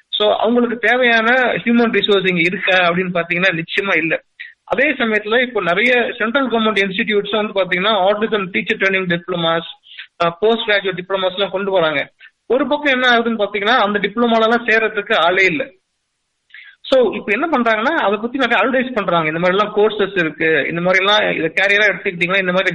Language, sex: Tamil, male